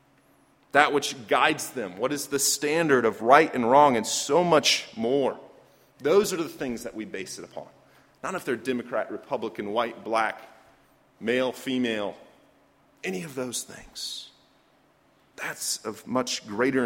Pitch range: 115-135 Hz